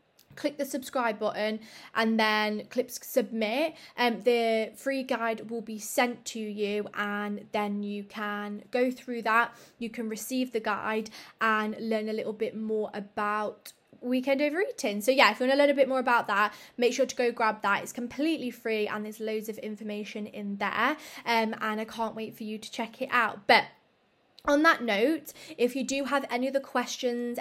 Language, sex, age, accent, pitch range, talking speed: English, female, 20-39, British, 215-255 Hz, 195 wpm